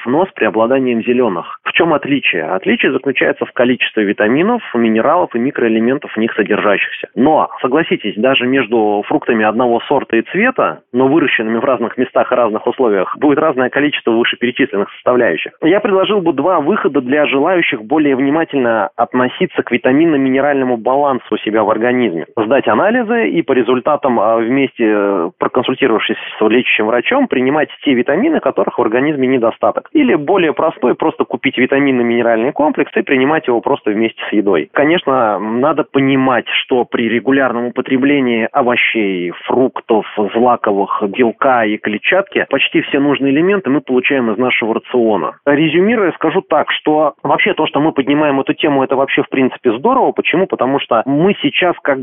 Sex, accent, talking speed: male, native, 155 wpm